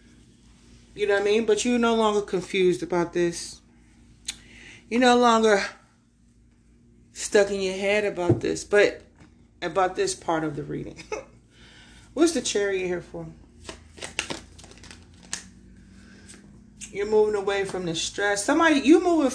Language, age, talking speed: English, 30-49, 130 wpm